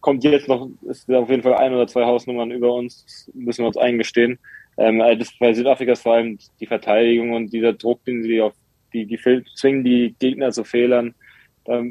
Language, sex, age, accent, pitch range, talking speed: German, male, 20-39, German, 115-125 Hz, 210 wpm